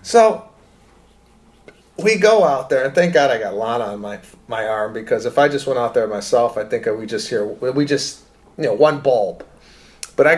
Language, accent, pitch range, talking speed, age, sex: English, American, 115-160 Hz, 210 wpm, 30-49, male